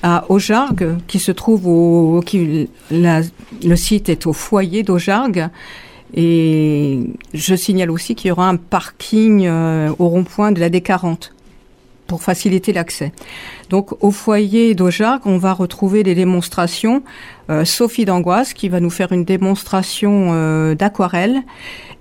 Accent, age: French, 50-69